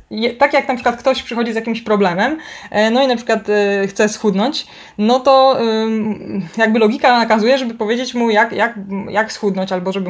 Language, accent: Polish, native